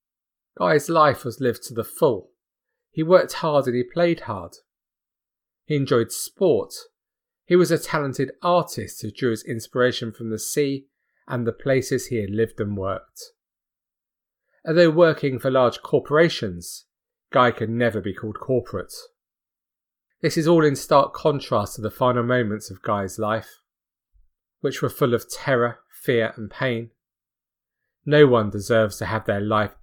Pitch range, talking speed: 110-145 Hz, 155 wpm